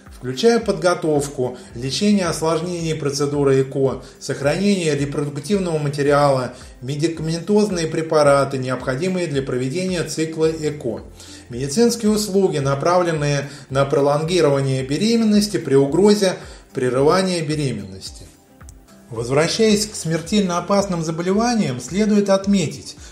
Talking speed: 85 wpm